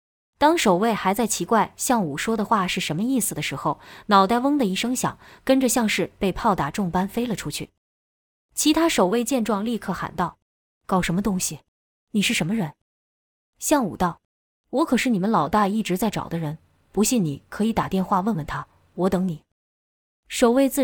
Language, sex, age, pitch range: Chinese, female, 20-39, 170-235 Hz